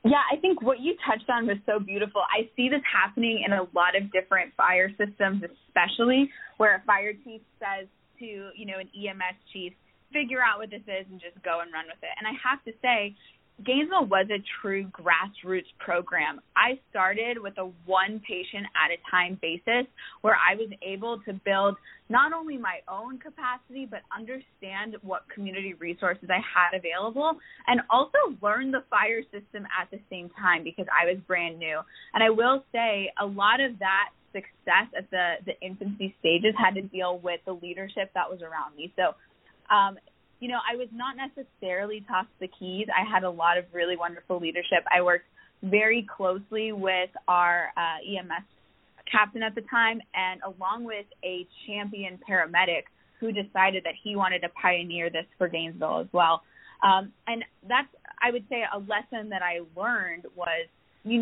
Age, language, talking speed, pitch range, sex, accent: 20-39, English, 180 wpm, 180-230 Hz, female, American